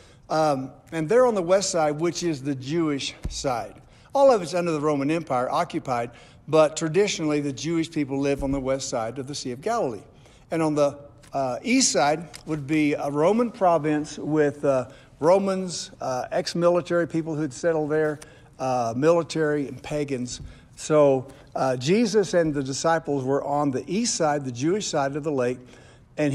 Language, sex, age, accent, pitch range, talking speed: English, male, 60-79, American, 135-175 Hz, 175 wpm